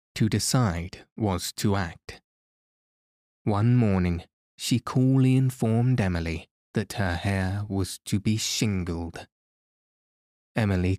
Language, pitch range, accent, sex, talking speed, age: English, 90-115 Hz, British, male, 105 wpm, 20-39